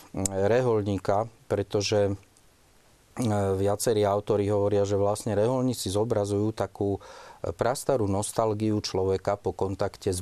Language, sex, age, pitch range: Slovak, male, 40-59, 95-110 Hz